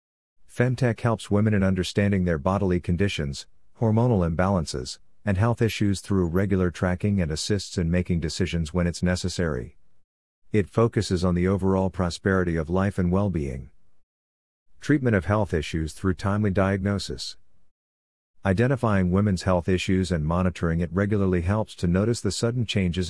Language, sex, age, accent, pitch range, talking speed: English, male, 50-69, American, 85-100 Hz, 145 wpm